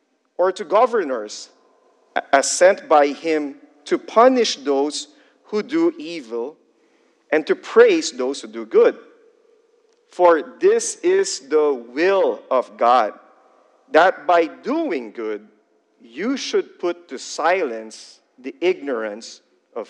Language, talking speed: English, 120 wpm